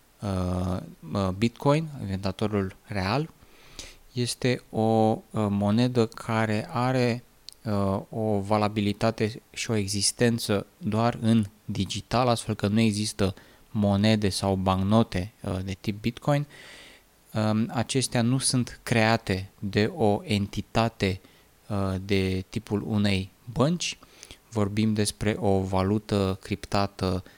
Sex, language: male, Romanian